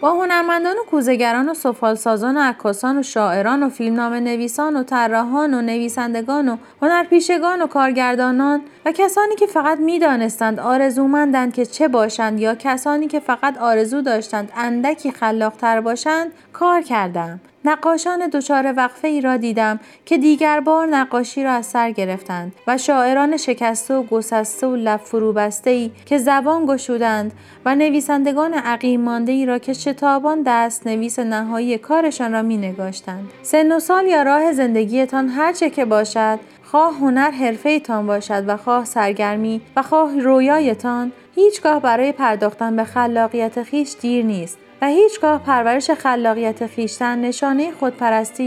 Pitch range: 225-290 Hz